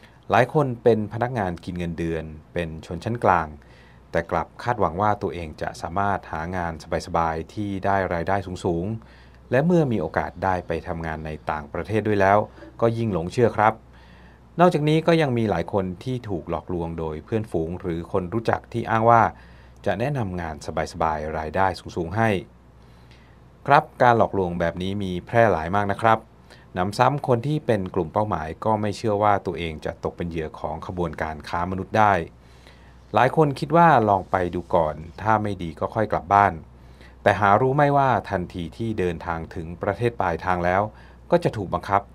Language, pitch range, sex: Thai, 80-105 Hz, male